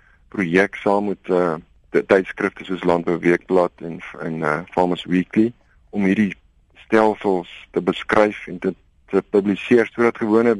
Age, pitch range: 50-69, 85-100 Hz